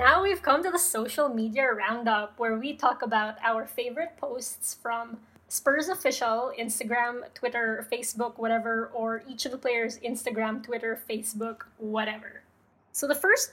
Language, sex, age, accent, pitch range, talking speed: English, female, 20-39, Filipino, 225-255 Hz, 150 wpm